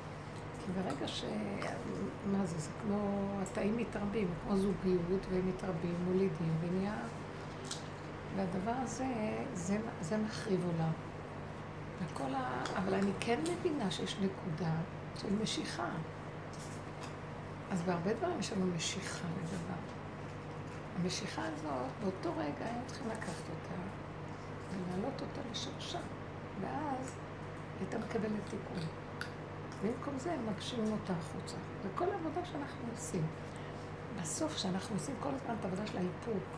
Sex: female